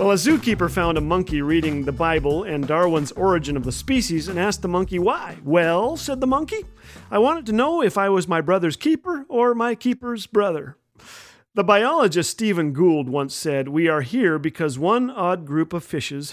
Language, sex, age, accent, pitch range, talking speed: English, male, 40-59, American, 150-200 Hz, 195 wpm